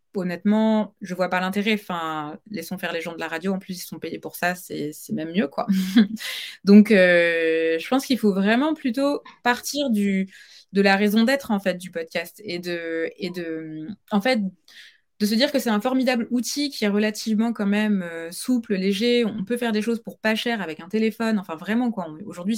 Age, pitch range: 20-39, 175-235 Hz